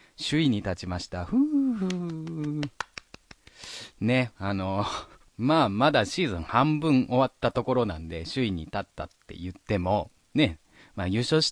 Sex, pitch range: male, 90-125 Hz